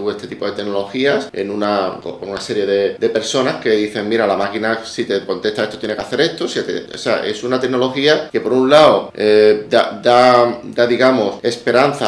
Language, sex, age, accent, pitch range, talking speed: Spanish, male, 30-49, Spanish, 105-125 Hz, 200 wpm